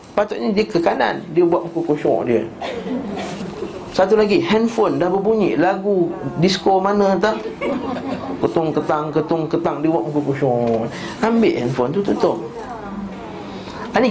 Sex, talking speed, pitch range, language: male, 135 wpm, 145-195 Hz, Malay